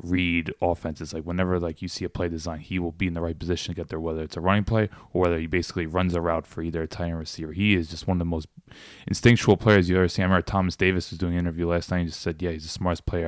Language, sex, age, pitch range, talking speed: English, male, 20-39, 85-95 Hz, 305 wpm